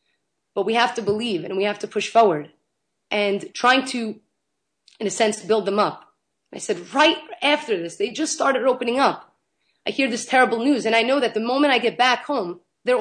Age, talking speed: 30-49, 210 wpm